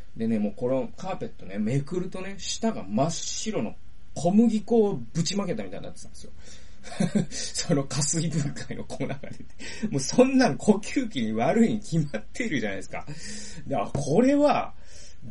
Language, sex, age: Japanese, male, 20-39